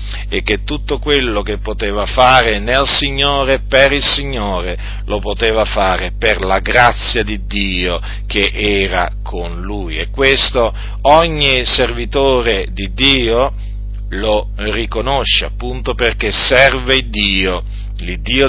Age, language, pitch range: 40-59, Italian, 100-125 Hz